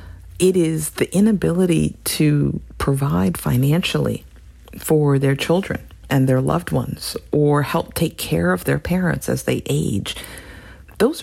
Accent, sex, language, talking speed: American, female, English, 135 wpm